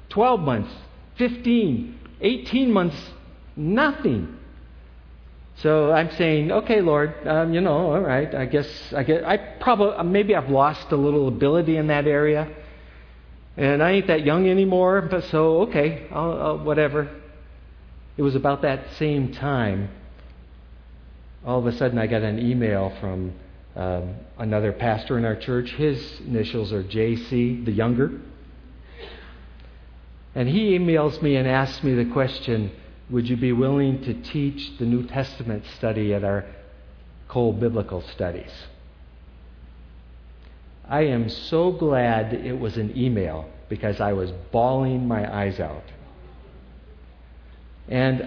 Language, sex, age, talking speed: English, male, 50-69, 135 wpm